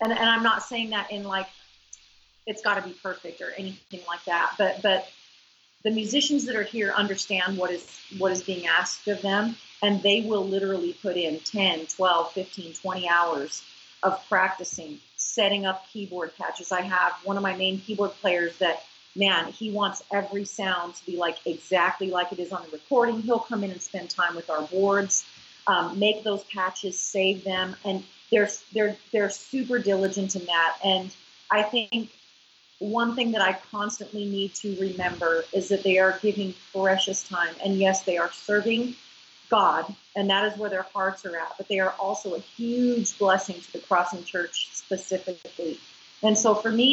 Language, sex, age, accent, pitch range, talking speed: English, female, 40-59, American, 185-210 Hz, 185 wpm